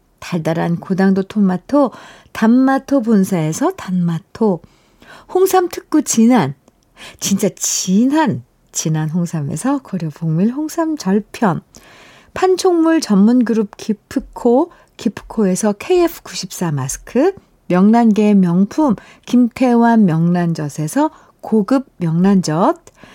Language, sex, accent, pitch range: Korean, female, native, 185-280 Hz